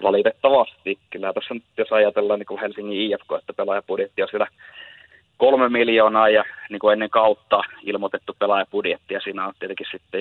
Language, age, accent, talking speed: Finnish, 30-49, native, 160 wpm